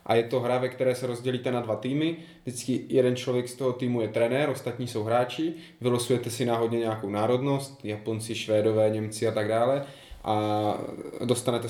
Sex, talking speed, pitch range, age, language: male, 180 wpm, 110-130 Hz, 20-39, Czech